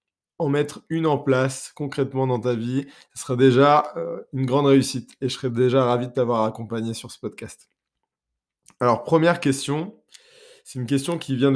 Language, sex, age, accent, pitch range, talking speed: French, male, 20-39, French, 125-145 Hz, 175 wpm